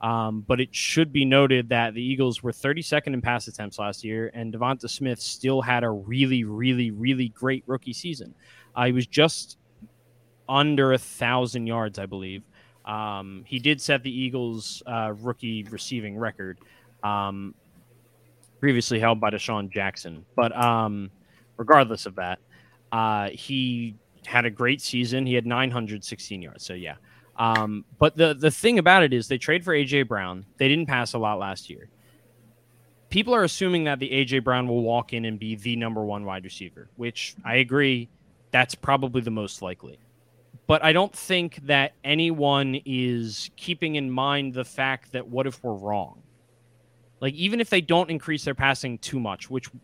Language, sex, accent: English, male, American